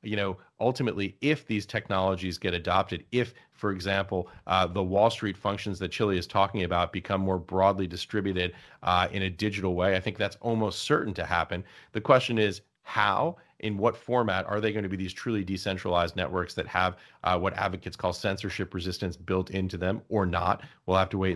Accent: American